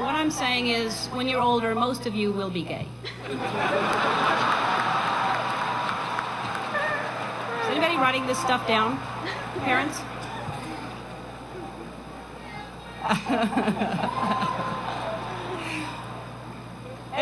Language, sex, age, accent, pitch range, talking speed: English, female, 40-59, American, 170-210 Hz, 70 wpm